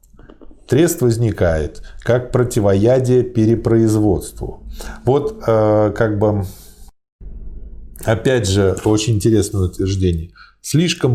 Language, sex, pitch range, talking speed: Russian, male, 95-125 Hz, 80 wpm